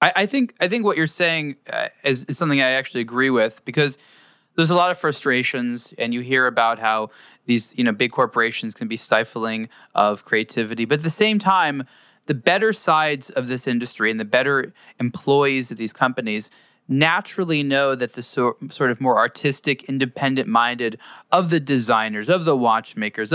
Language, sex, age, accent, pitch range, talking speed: English, male, 20-39, American, 120-160 Hz, 175 wpm